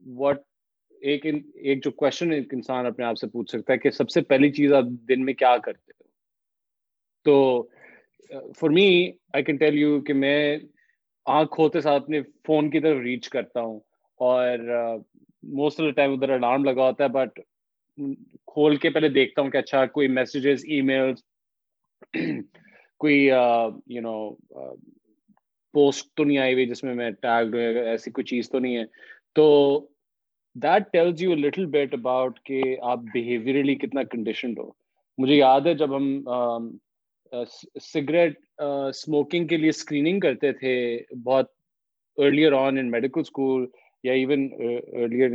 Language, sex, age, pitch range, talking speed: Urdu, male, 30-49, 125-150 Hz, 95 wpm